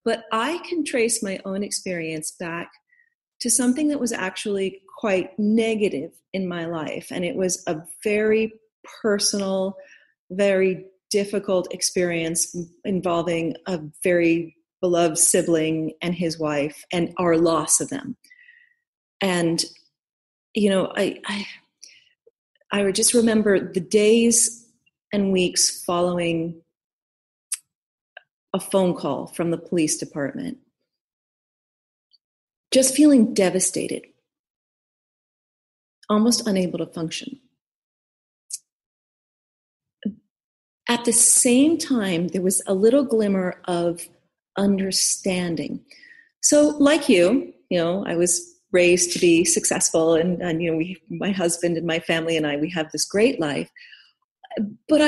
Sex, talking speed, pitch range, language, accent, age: female, 120 wpm, 170-235 Hz, English, American, 40-59